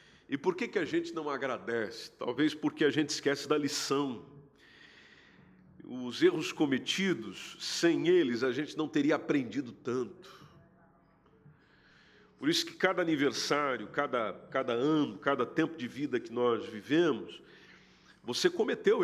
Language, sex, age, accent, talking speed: Portuguese, male, 50-69, Brazilian, 135 wpm